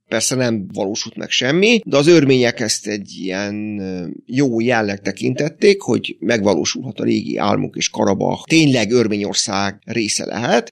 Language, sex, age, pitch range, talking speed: Hungarian, male, 30-49, 105-130 Hz, 140 wpm